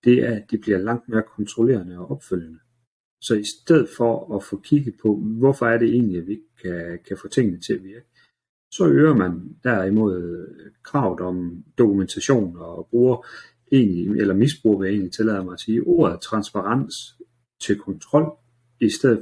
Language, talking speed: Danish, 175 wpm